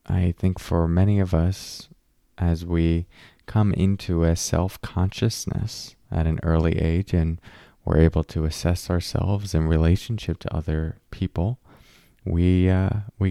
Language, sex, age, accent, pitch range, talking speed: English, male, 20-39, American, 90-110 Hz, 135 wpm